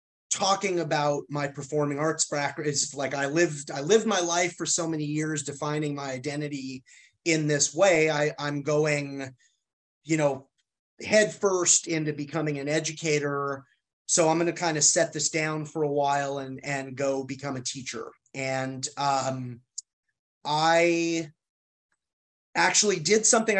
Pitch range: 140-165 Hz